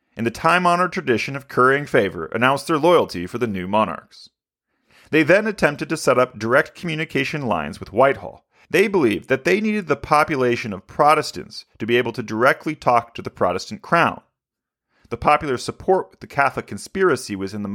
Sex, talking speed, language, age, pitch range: male, 185 wpm, English, 40-59, 110-165 Hz